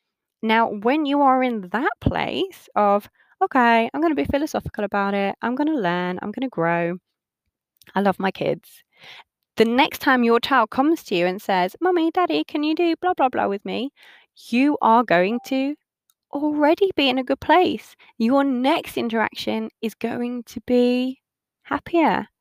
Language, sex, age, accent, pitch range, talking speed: English, female, 20-39, British, 195-265 Hz, 175 wpm